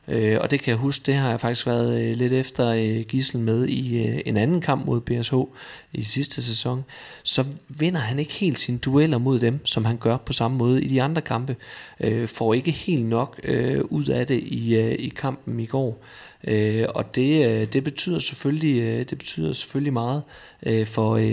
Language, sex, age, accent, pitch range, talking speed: Danish, male, 30-49, native, 115-135 Hz, 175 wpm